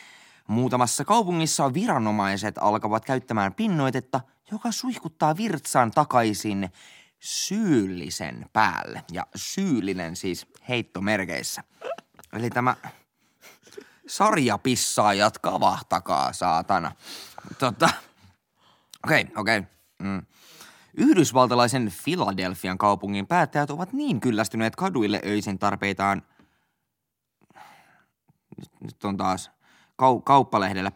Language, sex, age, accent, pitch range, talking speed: Finnish, male, 20-39, native, 100-140 Hz, 80 wpm